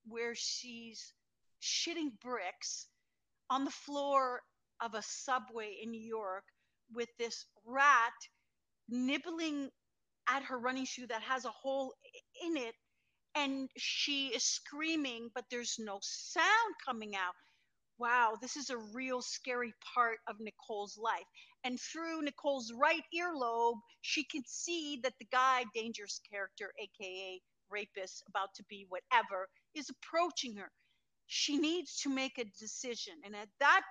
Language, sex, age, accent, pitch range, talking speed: English, female, 50-69, American, 230-290 Hz, 140 wpm